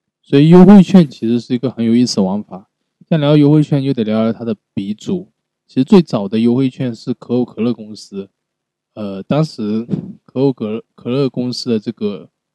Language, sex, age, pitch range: Chinese, male, 20-39, 105-135 Hz